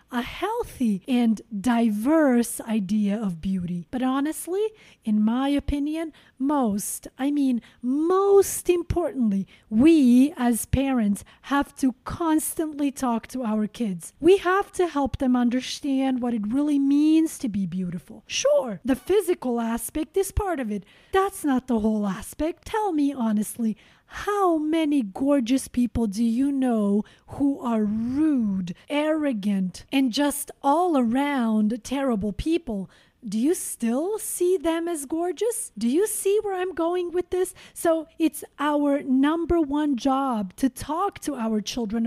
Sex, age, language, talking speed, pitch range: female, 30-49, English, 140 wpm, 225-300 Hz